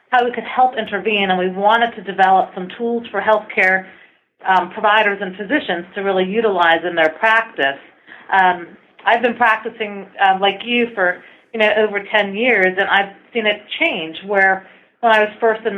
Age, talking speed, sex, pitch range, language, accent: 30-49, 180 wpm, female, 185-220 Hz, English, American